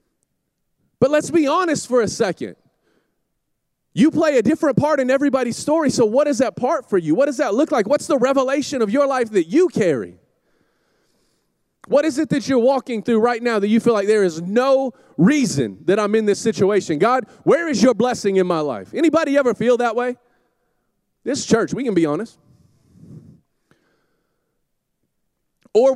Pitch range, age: 180-265 Hz, 30-49